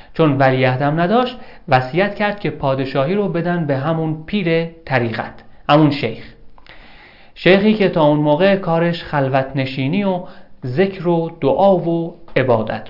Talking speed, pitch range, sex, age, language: 135 wpm, 135-180 Hz, male, 40-59, Persian